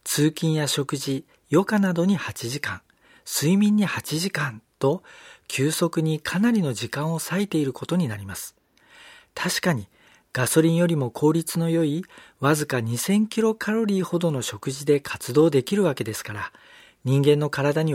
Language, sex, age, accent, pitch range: Japanese, male, 50-69, native, 135-190 Hz